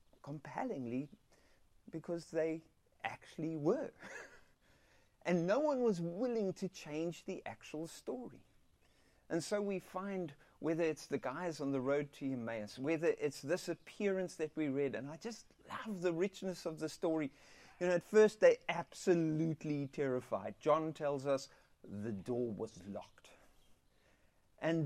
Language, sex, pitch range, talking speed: English, male, 145-220 Hz, 140 wpm